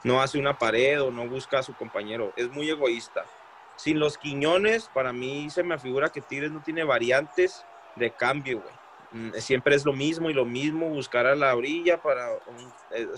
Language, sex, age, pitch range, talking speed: Spanish, male, 20-39, 130-175 Hz, 190 wpm